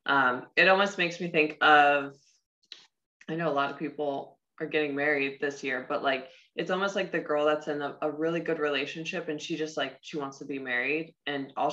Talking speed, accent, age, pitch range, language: 220 wpm, American, 20-39, 140-160 Hz, English